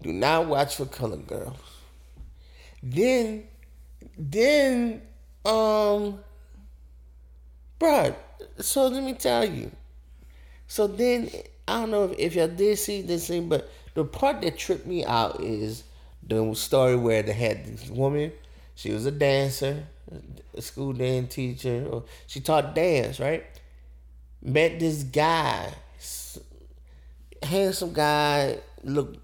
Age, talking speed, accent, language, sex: 30-49, 125 wpm, American, English, male